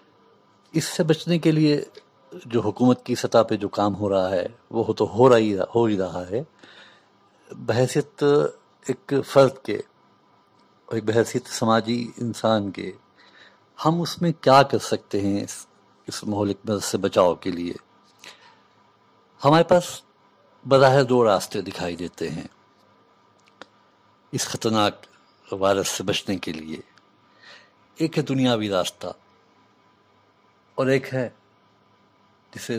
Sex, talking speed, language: male, 125 wpm, Urdu